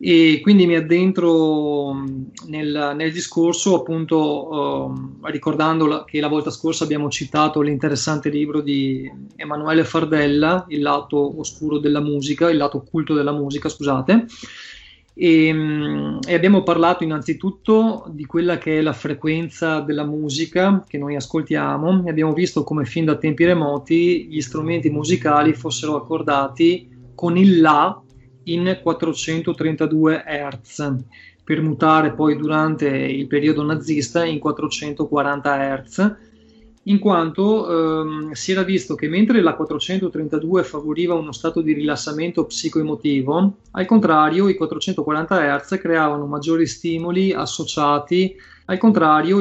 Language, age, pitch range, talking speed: Italian, 20-39, 150-170 Hz, 130 wpm